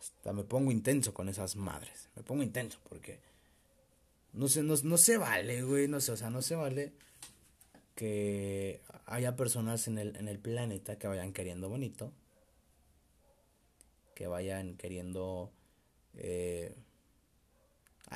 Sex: male